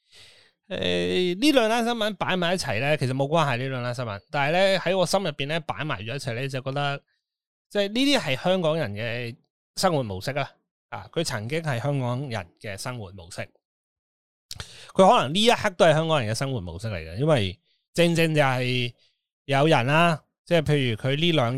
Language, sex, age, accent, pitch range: Chinese, male, 20-39, native, 115-160 Hz